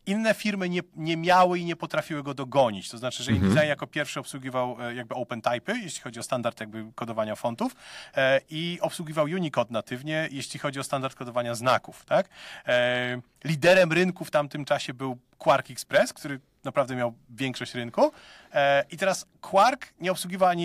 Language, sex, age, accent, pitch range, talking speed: Polish, male, 30-49, native, 130-175 Hz, 170 wpm